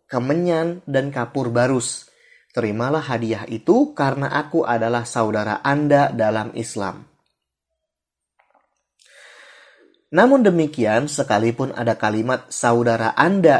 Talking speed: 95 wpm